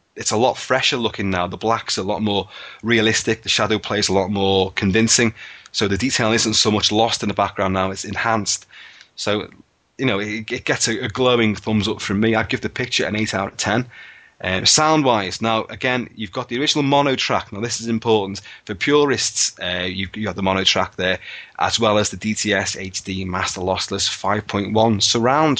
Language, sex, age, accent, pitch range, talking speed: English, male, 20-39, British, 100-115 Hz, 200 wpm